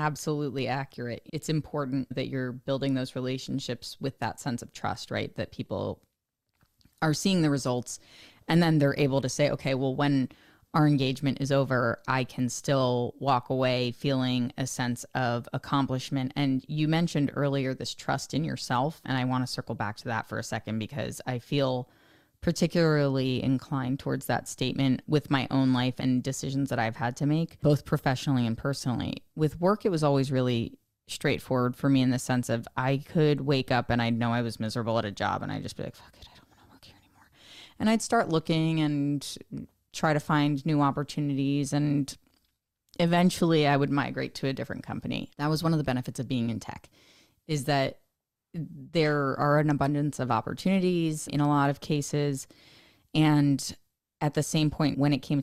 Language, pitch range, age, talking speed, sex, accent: English, 125-150 Hz, 20-39, 190 wpm, female, American